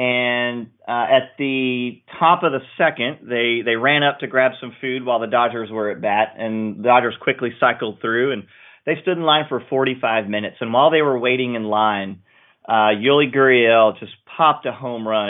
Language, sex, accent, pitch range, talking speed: English, male, American, 110-135 Hz, 200 wpm